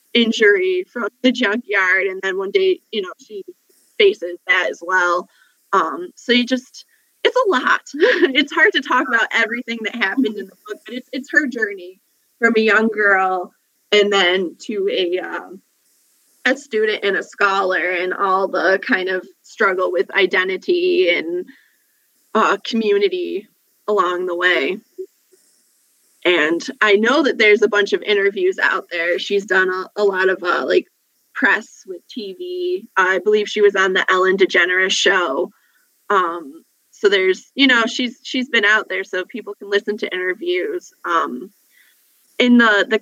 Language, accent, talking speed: English, American, 165 wpm